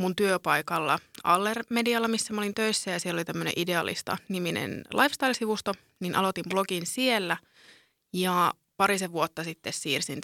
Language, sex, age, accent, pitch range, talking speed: Finnish, female, 20-39, native, 175-220 Hz, 135 wpm